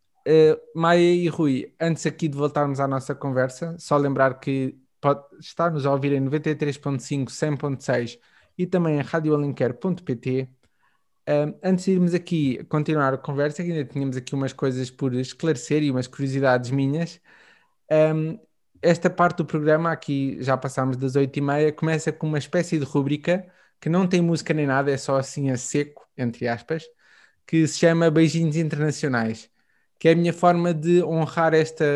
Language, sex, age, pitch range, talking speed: Portuguese, male, 20-39, 140-160 Hz, 170 wpm